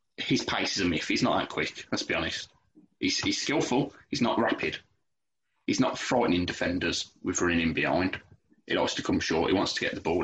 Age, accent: 20-39, British